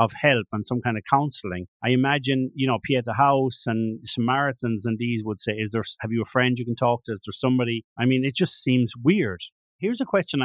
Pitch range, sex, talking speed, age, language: 110-130 Hz, male, 235 wpm, 30-49, English